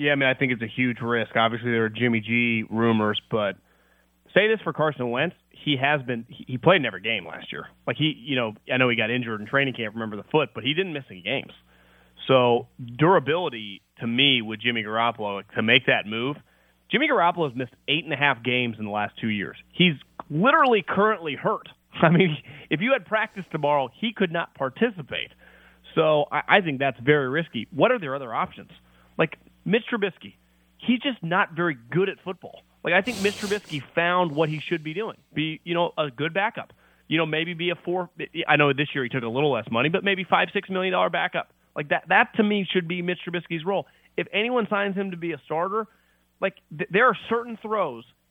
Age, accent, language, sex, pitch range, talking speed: 30-49, American, English, male, 120-190 Hz, 220 wpm